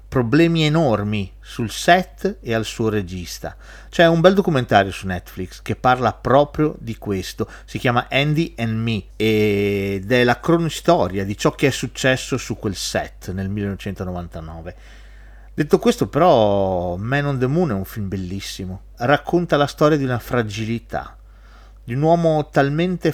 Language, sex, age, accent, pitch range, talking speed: Italian, male, 40-59, native, 95-140 Hz, 155 wpm